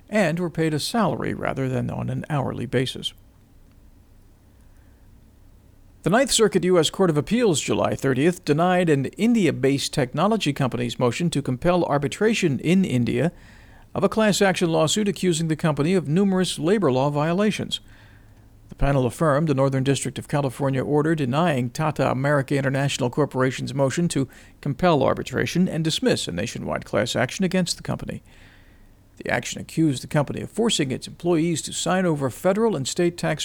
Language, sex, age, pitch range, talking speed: English, male, 50-69, 125-170 Hz, 155 wpm